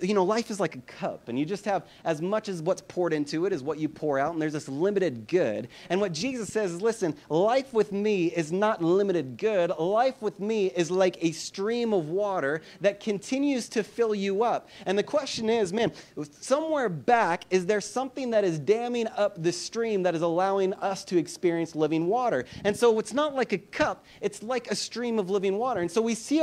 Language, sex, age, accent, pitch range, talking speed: English, male, 30-49, American, 180-225 Hz, 220 wpm